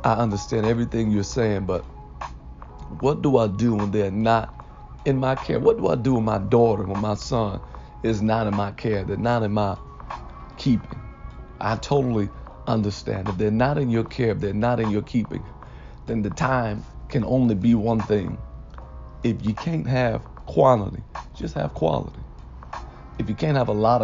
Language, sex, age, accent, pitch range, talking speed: English, male, 40-59, American, 100-120 Hz, 180 wpm